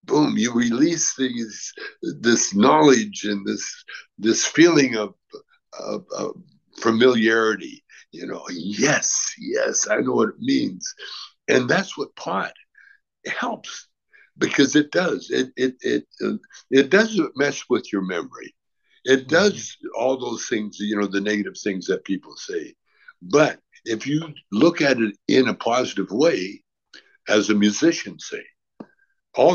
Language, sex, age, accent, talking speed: English, male, 60-79, American, 140 wpm